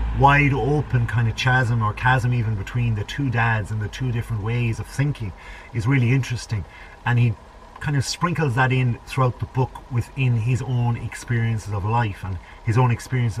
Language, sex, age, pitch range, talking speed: English, male, 30-49, 105-130 Hz, 190 wpm